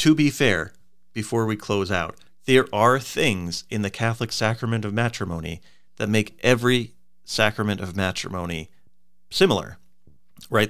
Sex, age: male, 40-59